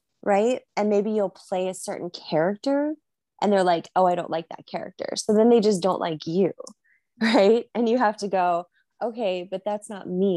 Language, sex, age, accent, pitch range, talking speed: English, female, 20-39, American, 165-205 Hz, 205 wpm